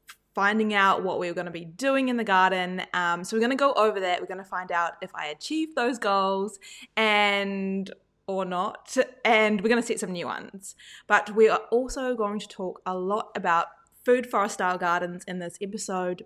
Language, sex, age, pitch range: English, female, 20-39, 180-230 Hz